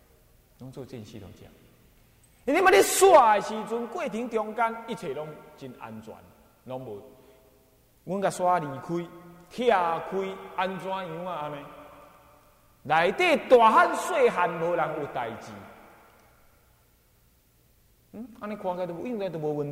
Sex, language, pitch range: male, Chinese, 130-205 Hz